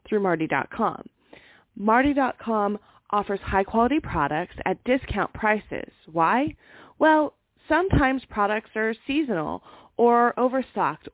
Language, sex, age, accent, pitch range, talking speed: English, female, 30-49, American, 195-255 Hz, 95 wpm